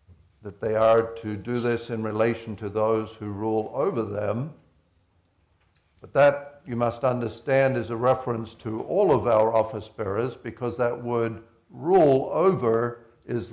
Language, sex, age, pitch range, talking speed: English, male, 60-79, 105-120 Hz, 150 wpm